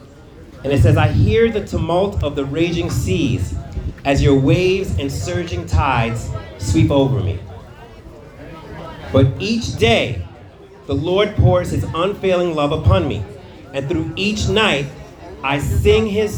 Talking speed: 140 wpm